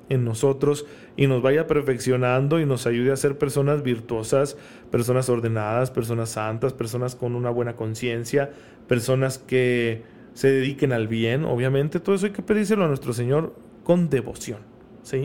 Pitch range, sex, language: 125-160 Hz, male, Spanish